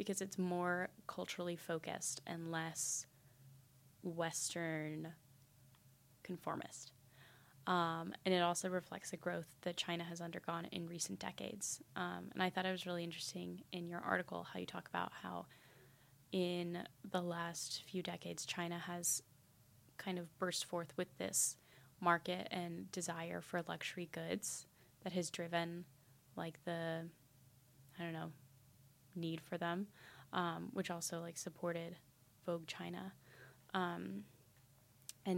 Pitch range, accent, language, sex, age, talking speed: 135-180 Hz, American, English, female, 10-29, 130 wpm